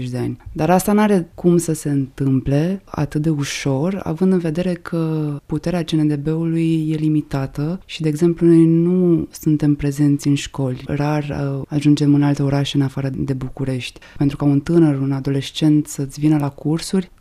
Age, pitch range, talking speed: 20-39, 145-165 Hz, 165 wpm